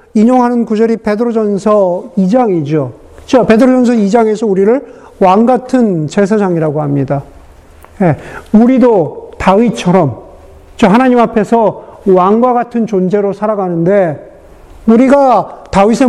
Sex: male